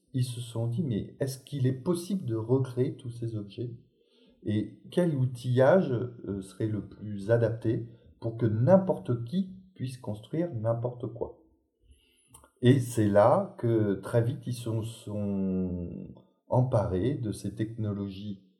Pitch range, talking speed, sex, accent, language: 95-125 Hz, 135 wpm, male, French, French